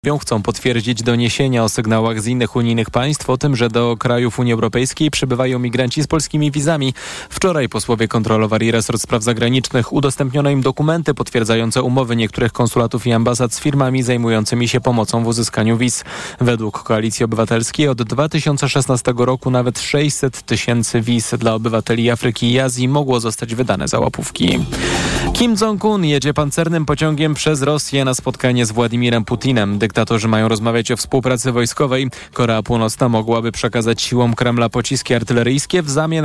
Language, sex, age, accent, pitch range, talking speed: Polish, male, 20-39, native, 115-140 Hz, 155 wpm